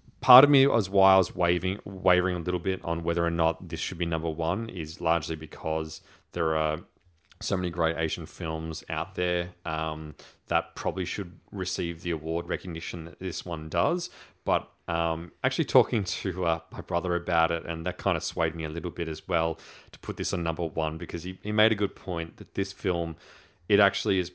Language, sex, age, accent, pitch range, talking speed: English, male, 30-49, Australian, 80-95 Hz, 205 wpm